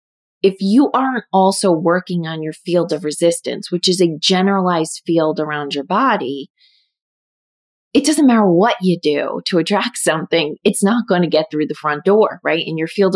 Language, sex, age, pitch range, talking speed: English, female, 30-49, 155-195 Hz, 180 wpm